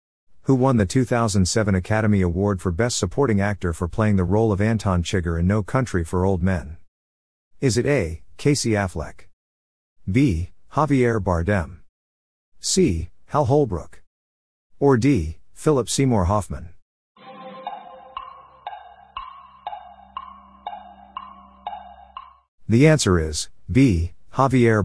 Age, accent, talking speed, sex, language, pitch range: 50-69, American, 105 wpm, male, English, 85-140 Hz